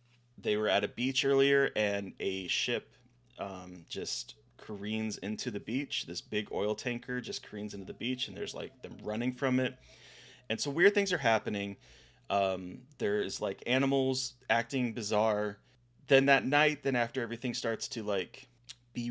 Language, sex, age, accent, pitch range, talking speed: English, male, 30-49, American, 100-125 Hz, 170 wpm